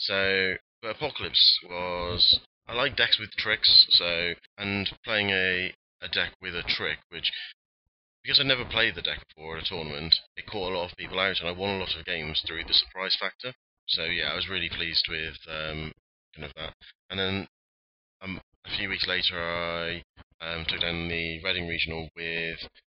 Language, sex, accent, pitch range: English, male, British, 80-95 Hz